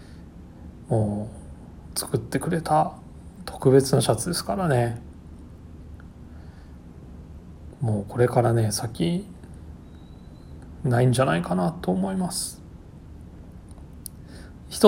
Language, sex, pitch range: Japanese, male, 80-135 Hz